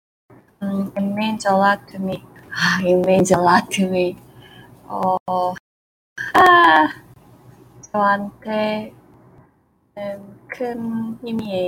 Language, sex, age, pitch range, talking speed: English, female, 20-39, 175-200 Hz, 60 wpm